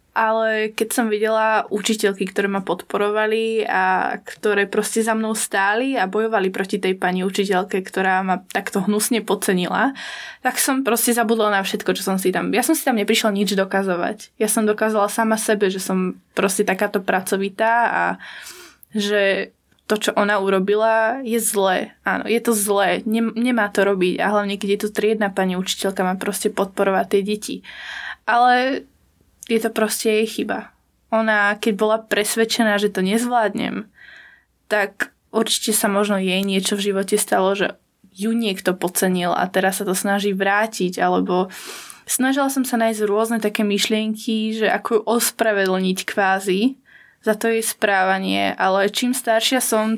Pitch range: 195-225 Hz